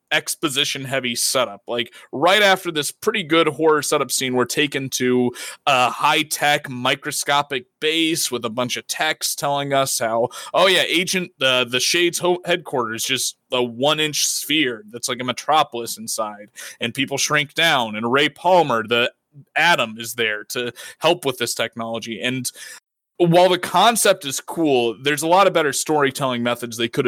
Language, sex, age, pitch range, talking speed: English, male, 20-39, 125-155 Hz, 165 wpm